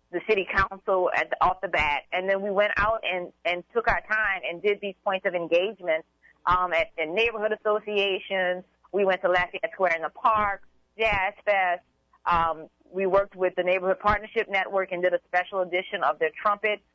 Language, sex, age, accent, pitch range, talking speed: English, female, 30-49, American, 175-205 Hz, 190 wpm